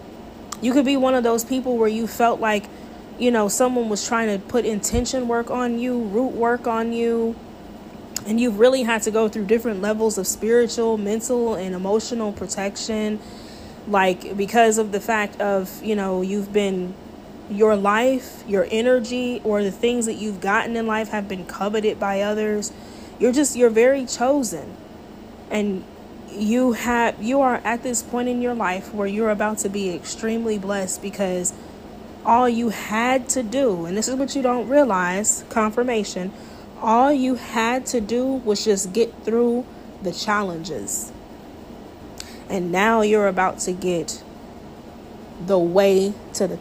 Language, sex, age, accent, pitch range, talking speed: English, female, 20-39, American, 200-240 Hz, 160 wpm